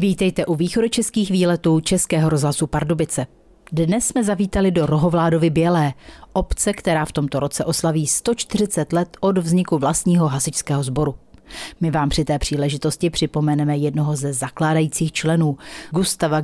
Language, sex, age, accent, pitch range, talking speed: Czech, female, 40-59, native, 150-185 Hz, 140 wpm